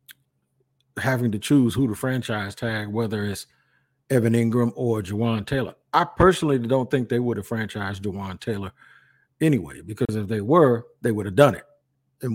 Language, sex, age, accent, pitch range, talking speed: English, male, 50-69, American, 110-130 Hz, 170 wpm